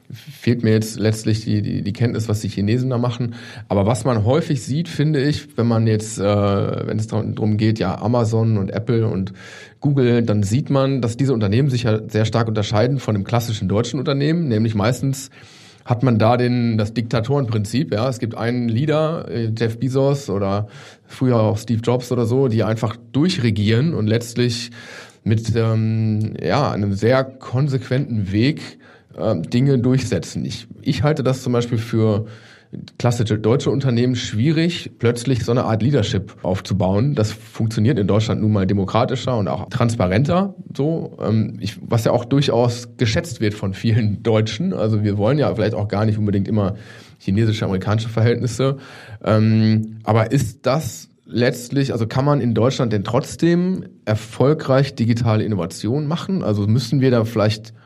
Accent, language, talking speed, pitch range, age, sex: German, German, 165 wpm, 110-130 Hz, 30-49, male